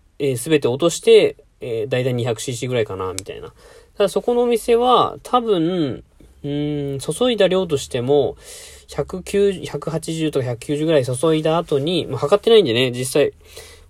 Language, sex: Japanese, male